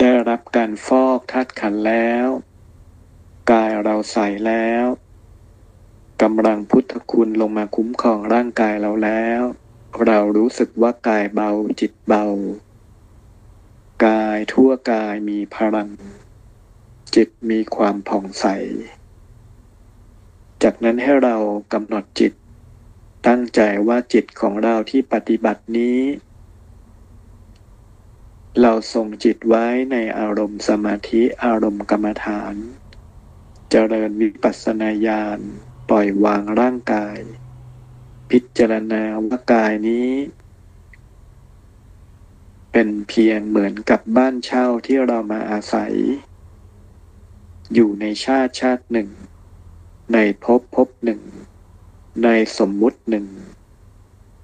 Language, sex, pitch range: Thai, male, 100-115 Hz